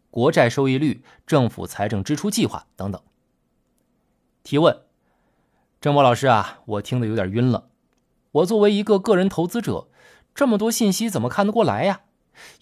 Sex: male